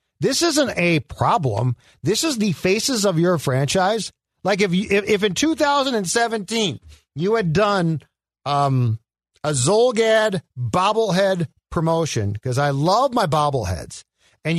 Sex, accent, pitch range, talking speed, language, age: male, American, 145-210 Hz, 130 wpm, English, 50-69